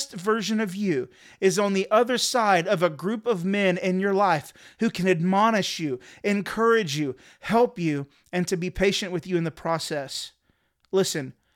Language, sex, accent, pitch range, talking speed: English, male, American, 175-210 Hz, 175 wpm